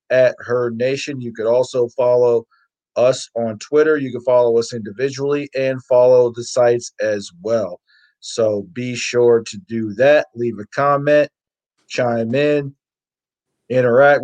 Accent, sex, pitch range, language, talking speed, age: American, male, 115-140 Hz, English, 140 wpm, 50-69